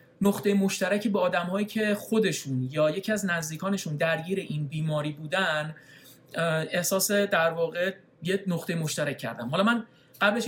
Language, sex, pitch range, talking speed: Persian, male, 155-205 Hz, 145 wpm